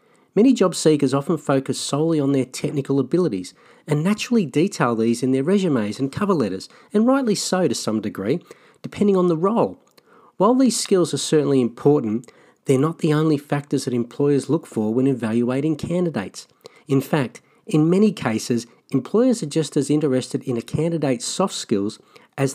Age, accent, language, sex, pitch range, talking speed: 40-59, Australian, English, male, 135-185 Hz, 170 wpm